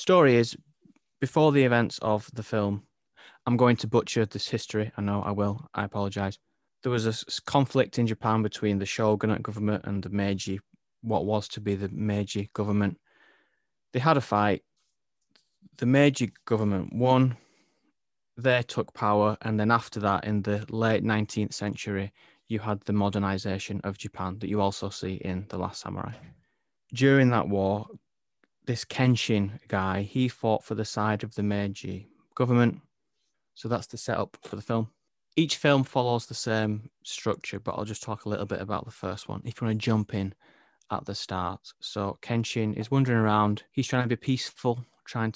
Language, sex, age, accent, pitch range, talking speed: English, male, 20-39, British, 100-120 Hz, 175 wpm